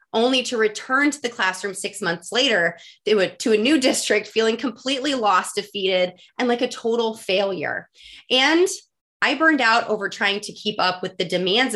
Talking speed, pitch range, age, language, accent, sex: 175 wpm, 185-235 Hz, 30-49, English, American, female